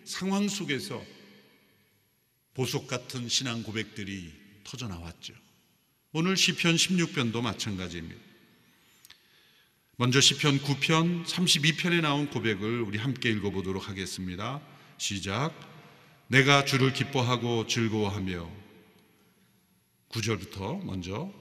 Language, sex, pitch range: Korean, male, 105-160 Hz